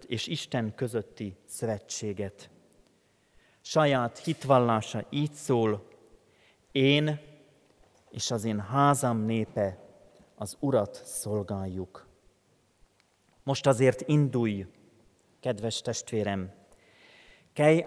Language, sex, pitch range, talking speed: Hungarian, male, 110-140 Hz, 75 wpm